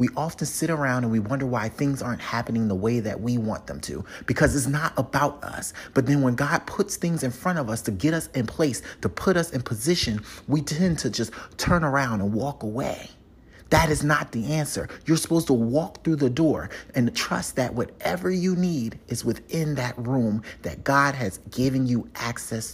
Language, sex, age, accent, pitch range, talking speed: English, male, 30-49, American, 115-160 Hz, 210 wpm